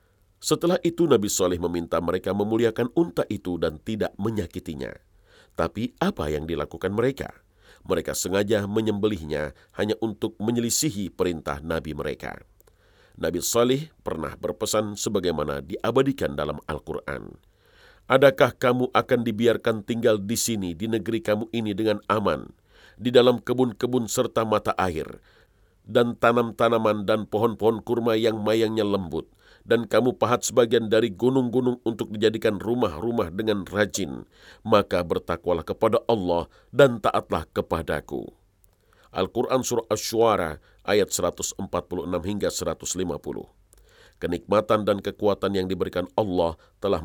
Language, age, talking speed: Indonesian, 50-69, 120 wpm